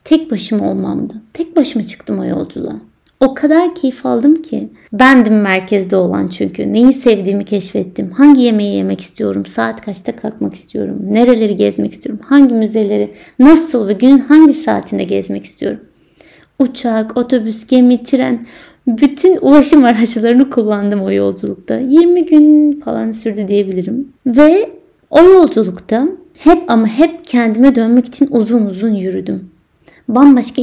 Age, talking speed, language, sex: 30-49, 135 wpm, Turkish, female